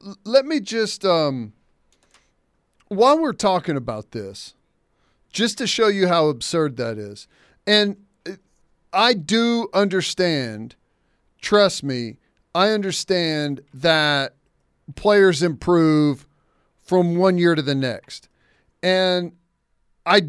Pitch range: 145-185 Hz